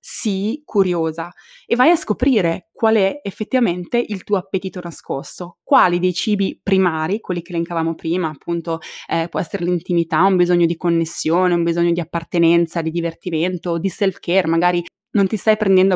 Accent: native